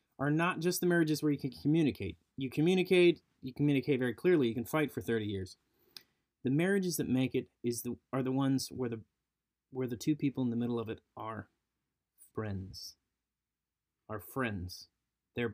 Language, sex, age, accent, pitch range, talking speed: English, male, 30-49, American, 105-140 Hz, 180 wpm